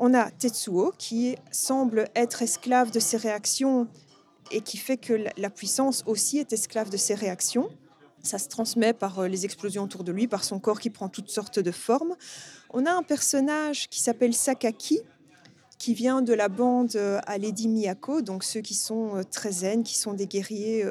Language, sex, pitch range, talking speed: French, female, 215-275 Hz, 185 wpm